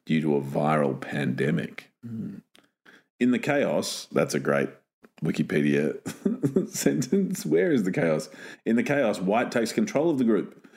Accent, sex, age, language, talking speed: Australian, male, 40-59, English, 145 wpm